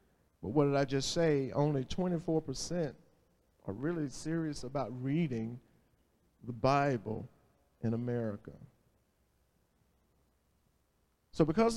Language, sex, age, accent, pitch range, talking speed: English, male, 50-69, American, 120-160 Hz, 95 wpm